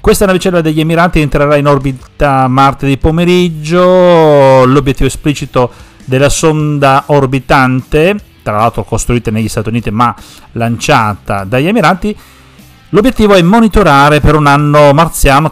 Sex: male